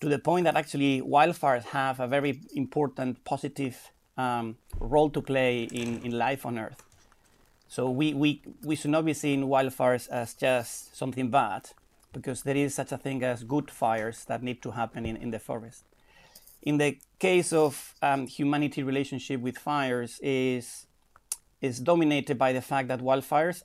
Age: 30-49